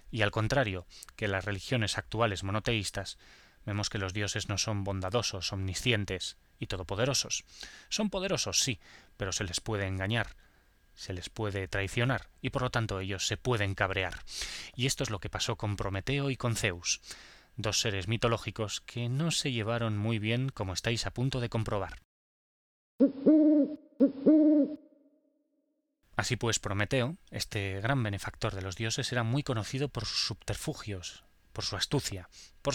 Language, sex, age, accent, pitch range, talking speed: Spanish, male, 20-39, Spanish, 100-130 Hz, 150 wpm